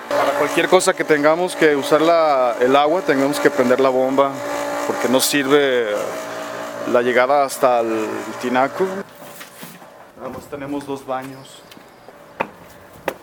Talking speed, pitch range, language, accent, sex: 125 wpm, 125-150 Hz, Spanish, Mexican, male